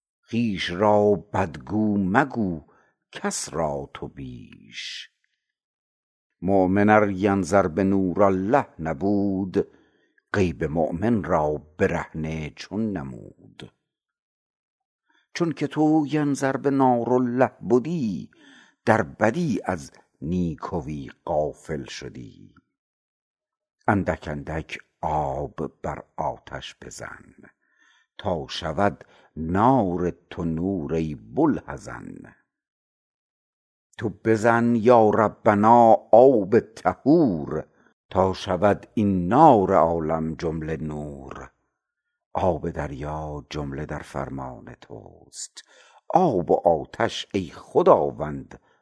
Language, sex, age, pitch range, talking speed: Persian, male, 60-79, 80-115 Hz, 85 wpm